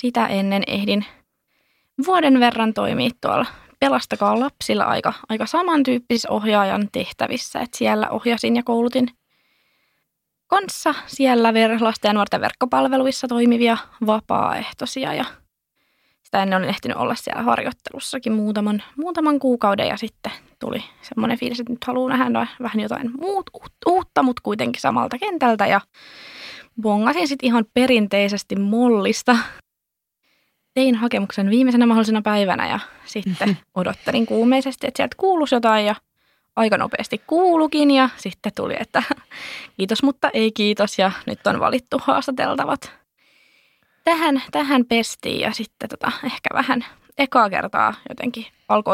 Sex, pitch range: female, 215-265 Hz